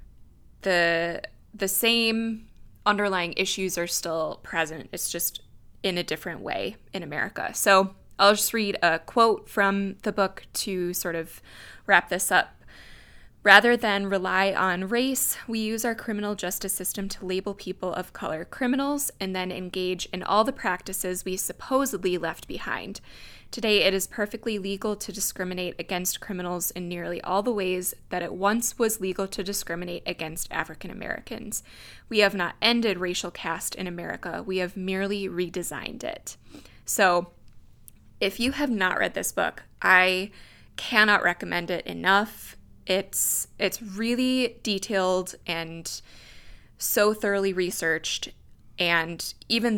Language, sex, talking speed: English, female, 145 wpm